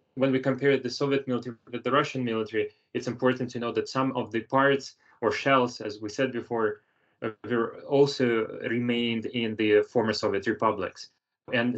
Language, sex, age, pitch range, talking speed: English, male, 20-39, 110-130 Hz, 170 wpm